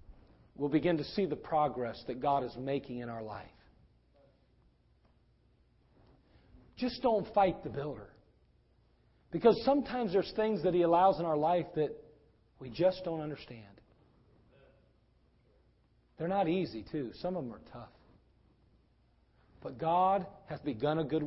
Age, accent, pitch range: 40-59, American, 115-170 Hz